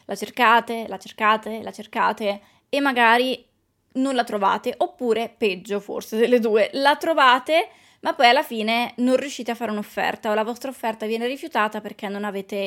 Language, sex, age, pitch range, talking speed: Italian, female, 20-39, 210-260 Hz, 170 wpm